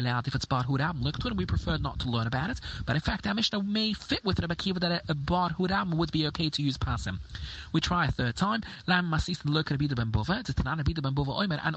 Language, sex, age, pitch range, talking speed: English, male, 30-49, 130-175 Hz, 255 wpm